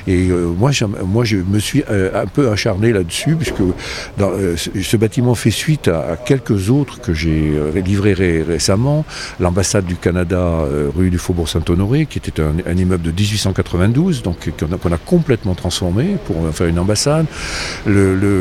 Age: 60-79